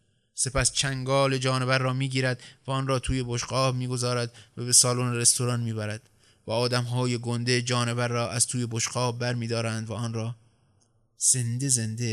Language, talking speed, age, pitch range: Persian, 165 wpm, 20-39, 120-140 Hz